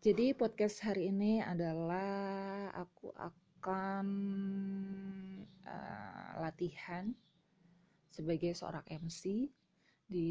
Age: 20-39